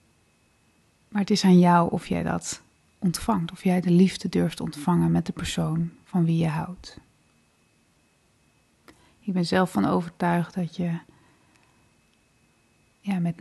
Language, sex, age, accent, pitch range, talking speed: Dutch, female, 30-49, Dutch, 175-200 Hz, 135 wpm